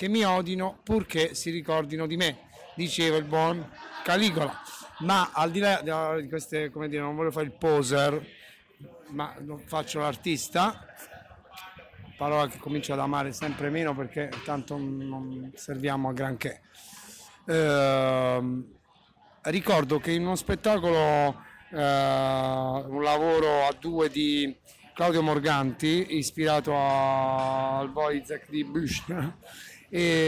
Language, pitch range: Italian, 140-165 Hz